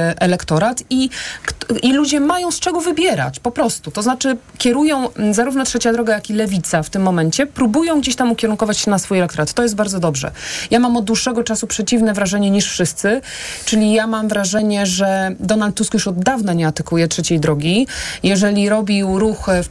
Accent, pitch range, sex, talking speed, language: native, 180-220 Hz, female, 185 wpm, Polish